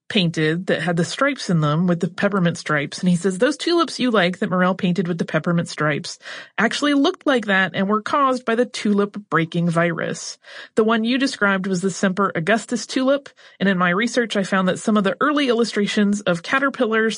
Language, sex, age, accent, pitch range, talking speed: English, female, 30-49, American, 170-225 Hz, 210 wpm